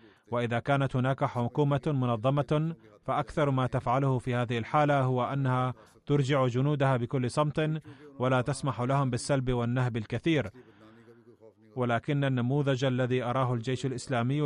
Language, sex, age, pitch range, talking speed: Arabic, male, 30-49, 120-140 Hz, 120 wpm